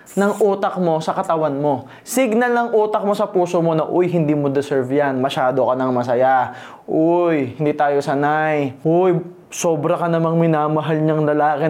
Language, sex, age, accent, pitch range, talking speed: Filipino, male, 20-39, native, 170-250 Hz, 175 wpm